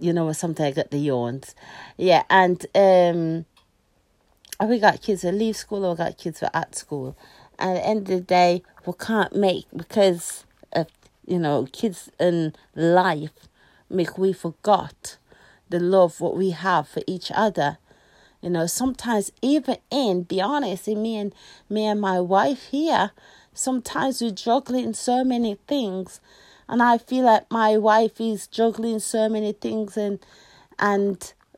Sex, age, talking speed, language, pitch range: female, 40-59, 160 wpm, English, 185-235 Hz